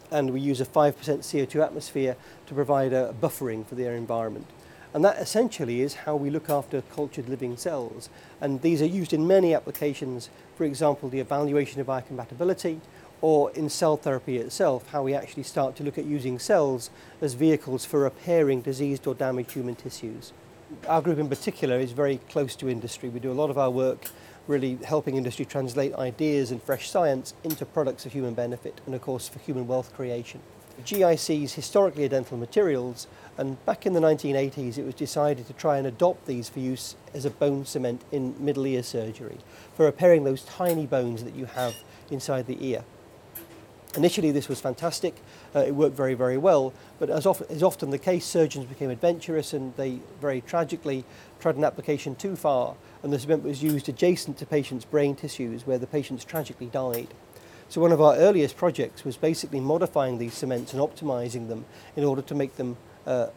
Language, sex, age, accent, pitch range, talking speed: English, male, 40-59, British, 130-150 Hz, 190 wpm